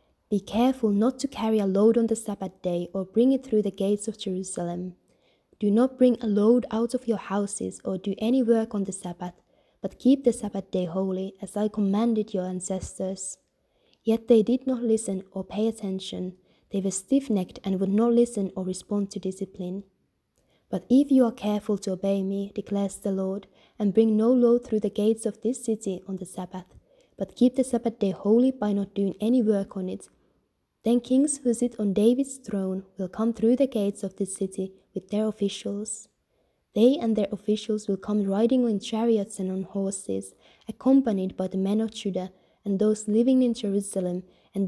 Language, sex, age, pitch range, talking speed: English, female, 20-39, 190-230 Hz, 195 wpm